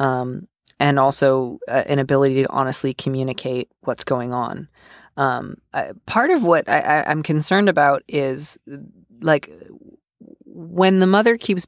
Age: 30-49